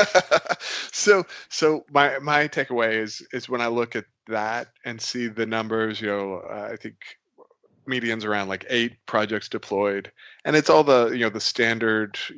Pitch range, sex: 110-125 Hz, male